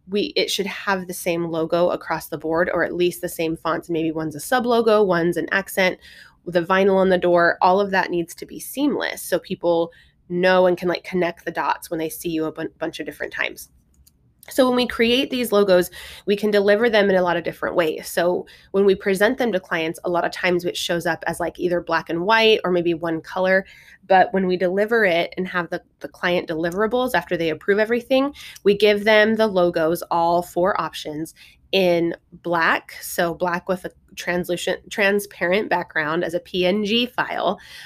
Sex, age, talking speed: female, 20-39, 210 wpm